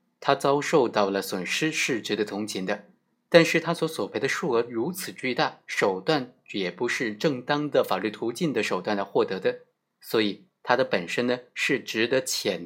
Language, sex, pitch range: Chinese, male, 110-165 Hz